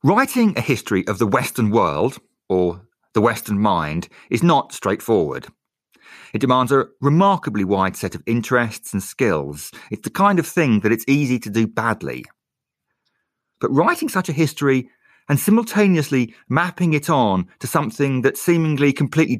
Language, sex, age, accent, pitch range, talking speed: English, male, 40-59, British, 105-155 Hz, 155 wpm